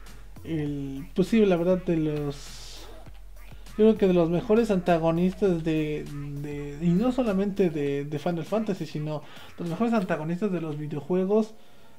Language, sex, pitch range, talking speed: Spanish, male, 160-190 Hz, 160 wpm